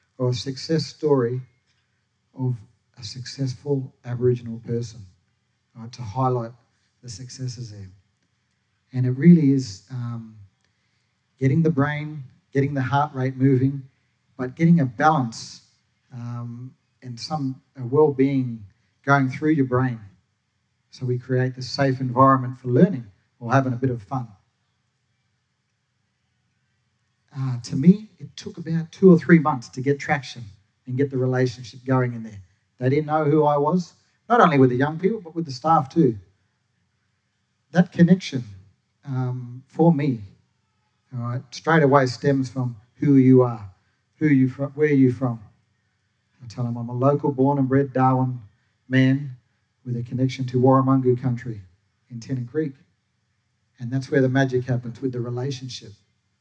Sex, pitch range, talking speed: male, 115-135 Hz, 150 wpm